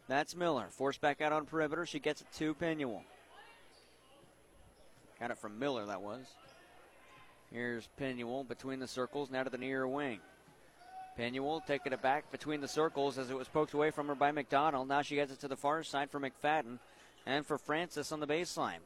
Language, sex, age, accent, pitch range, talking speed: English, male, 30-49, American, 145-170 Hz, 190 wpm